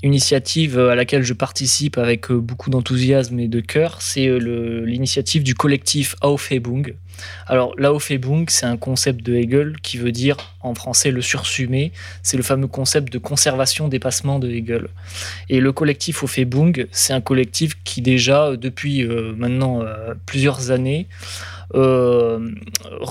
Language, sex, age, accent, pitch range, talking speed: French, male, 20-39, French, 115-140 Hz, 140 wpm